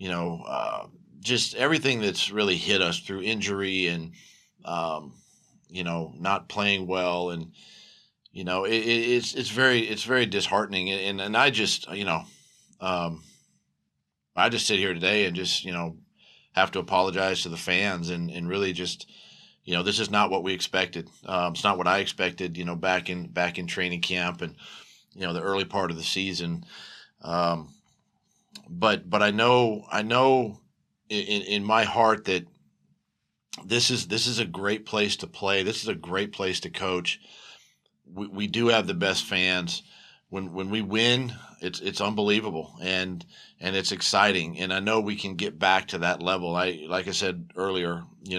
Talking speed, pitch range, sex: 180 wpm, 90-105 Hz, male